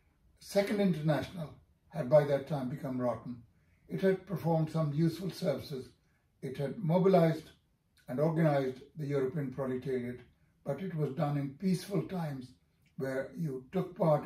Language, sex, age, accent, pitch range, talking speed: English, male, 60-79, Indian, 130-165 Hz, 140 wpm